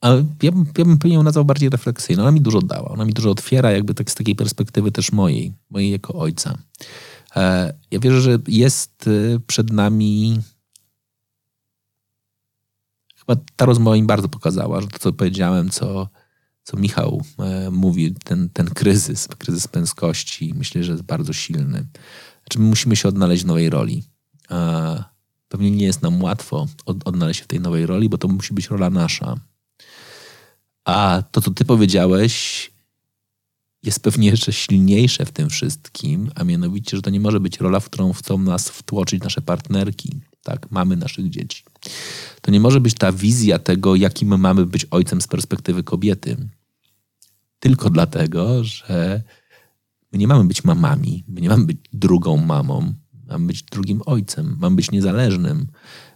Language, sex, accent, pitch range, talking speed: Polish, male, native, 95-135 Hz, 160 wpm